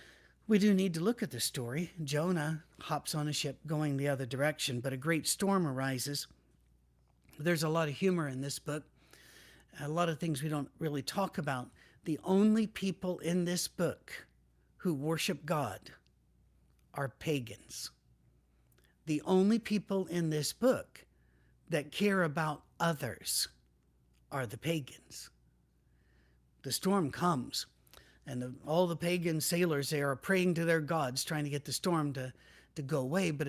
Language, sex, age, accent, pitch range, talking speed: English, male, 50-69, American, 130-165 Hz, 155 wpm